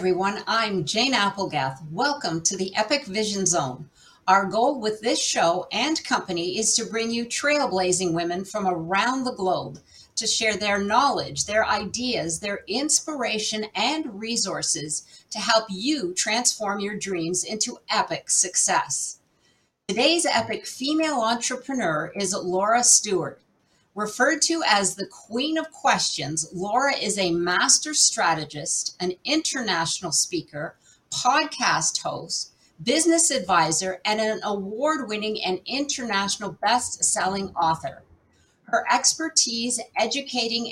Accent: American